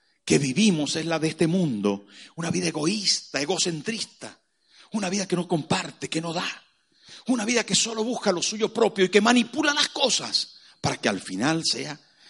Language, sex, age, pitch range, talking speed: Spanish, male, 50-69, 190-235 Hz, 180 wpm